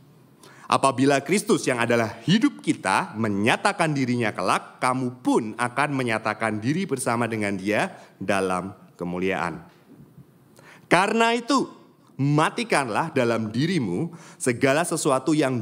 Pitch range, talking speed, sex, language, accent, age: 95-135 Hz, 105 wpm, male, Indonesian, native, 30-49